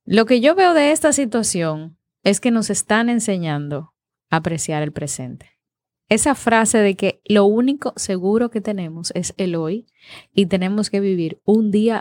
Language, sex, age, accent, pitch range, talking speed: Spanish, female, 20-39, American, 160-215 Hz, 170 wpm